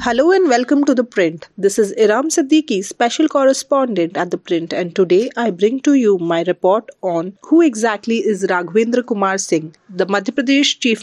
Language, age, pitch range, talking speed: English, 30-49, 195-260 Hz, 185 wpm